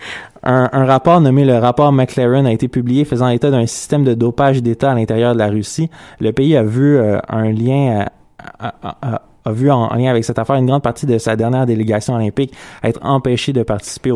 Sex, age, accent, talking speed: male, 20-39, Canadian, 215 wpm